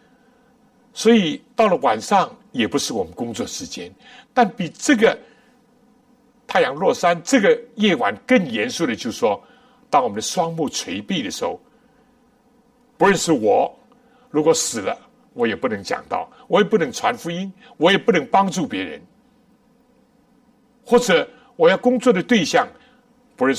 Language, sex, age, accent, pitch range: Chinese, male, 60-79, American, 240-250 Hz